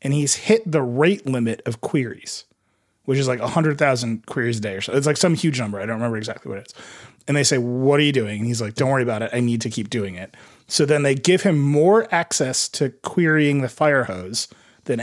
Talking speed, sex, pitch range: 245 wpm, male, 120-155 Hz